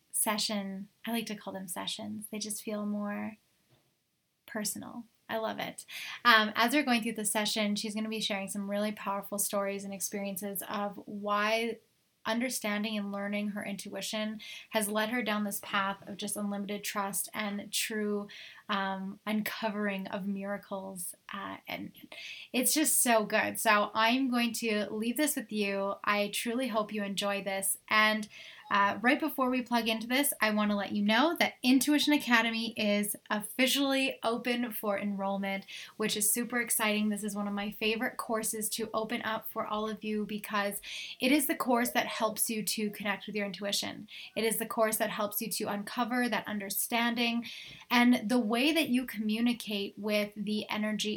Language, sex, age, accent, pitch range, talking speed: English, female, 10-29, American, 205-235 Hz, 175 wpm